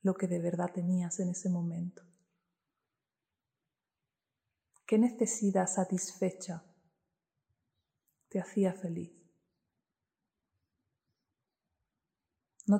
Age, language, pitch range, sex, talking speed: 20-39, Spanish, 170-190 Hz, female, 70 wpm